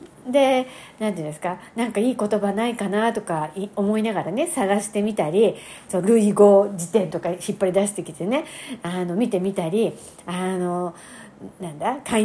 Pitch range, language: 185-280 Hz, Japanese